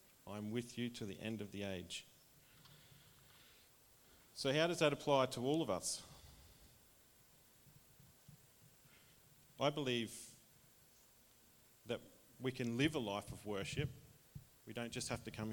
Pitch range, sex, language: 110-135 Hz, male, English